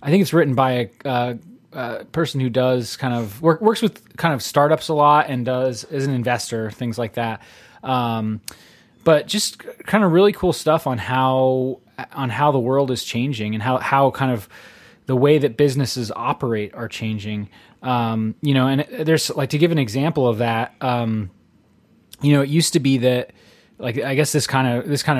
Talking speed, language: 200 wpm, English